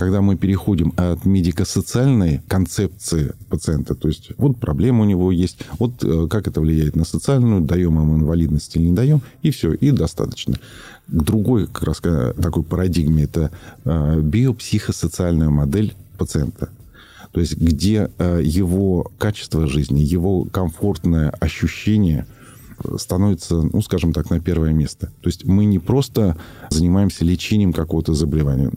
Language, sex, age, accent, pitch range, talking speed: Russian, male, 40-59, native, 80-100 Hz, 135 wpm